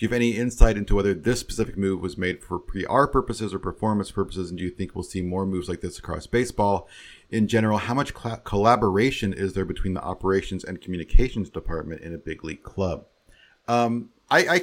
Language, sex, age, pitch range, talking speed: English, male, 40-59, 80-100 Hz, 215 wpm